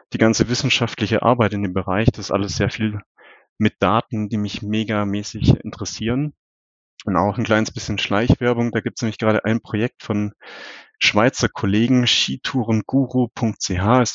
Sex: male